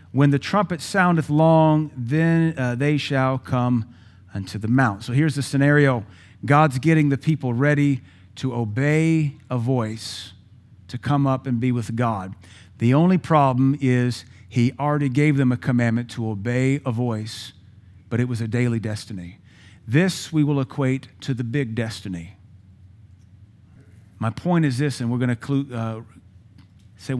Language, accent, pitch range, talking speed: English, American, 105-145 Hz, 155 wpm